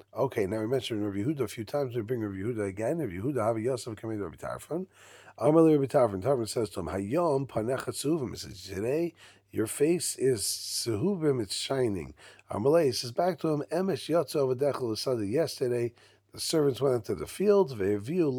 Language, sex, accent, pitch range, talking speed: English, male, American, 105-145 Hz, 170 wpm